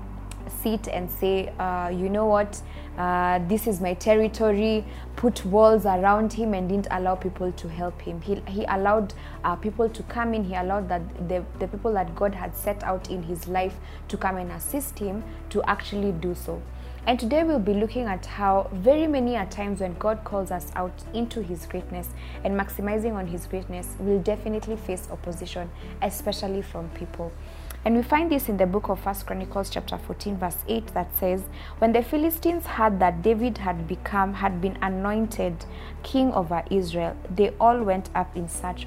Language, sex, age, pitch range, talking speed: English, female, 20-39, 180-220 Hz, 185 wpm